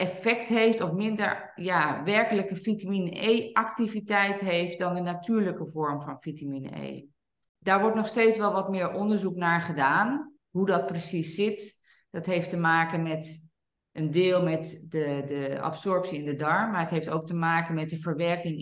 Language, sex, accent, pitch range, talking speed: Dutch, female, Dutch, 160-200 Hz, 170 wpm